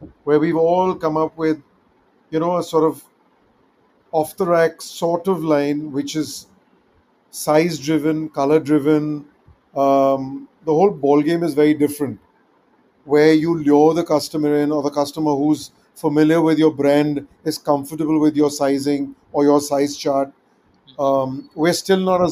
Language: English